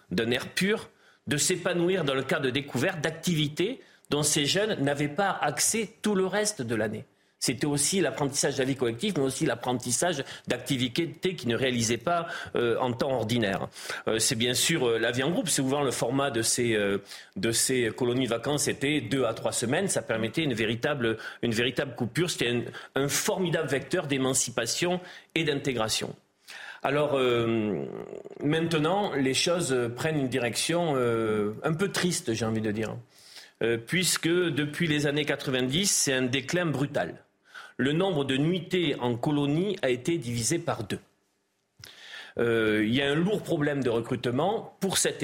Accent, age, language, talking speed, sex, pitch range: French, 40-59, French, 175 wpm, male, 120-170 Hz